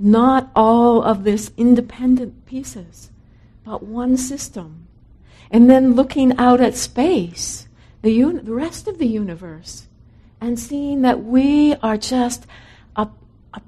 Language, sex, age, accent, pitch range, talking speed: English, female, 60-79, American, 195-250 Hz, 130 wpm